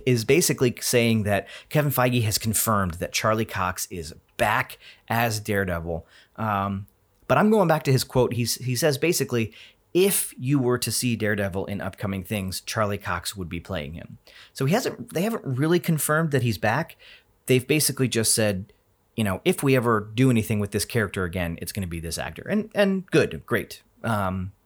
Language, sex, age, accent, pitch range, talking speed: English, male, 30-49, American, 100-130 Hz, 190 wpm